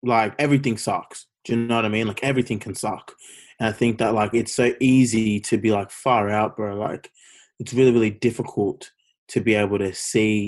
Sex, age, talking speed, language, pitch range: male, 20-39, 210 wpm, English, 105-115 Hz